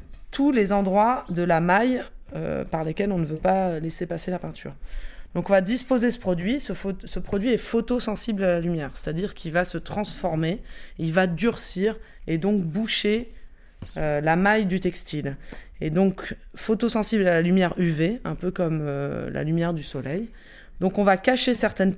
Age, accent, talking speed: 20-39, French, 185 wpm